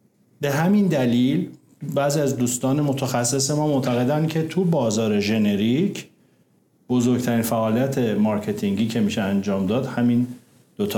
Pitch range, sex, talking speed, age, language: 125-195 Hz, male, 120 wpm, 50-69, Persian